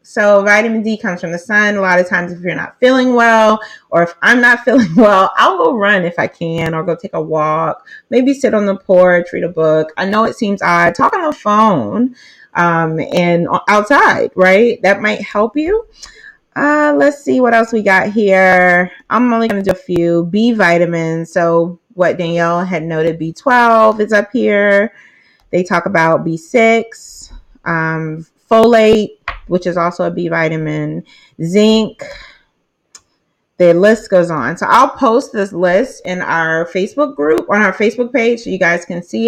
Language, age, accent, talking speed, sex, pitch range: English, 30-49, American, 180 wpm, female, 175-220 Hz